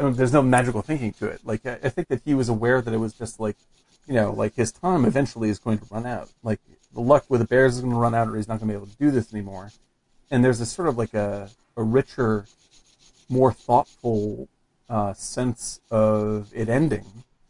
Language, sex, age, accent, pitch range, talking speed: English, male, 40-59, American, 110-125 Hz, 235 wpm